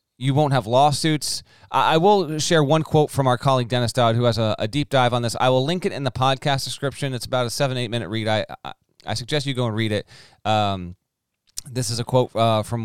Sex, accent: male, American